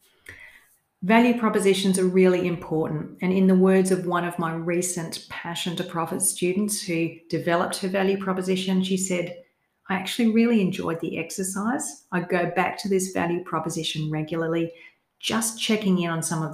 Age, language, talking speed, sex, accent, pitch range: 40-59, English, 165 wpm, female, Australian, 165-195 Hz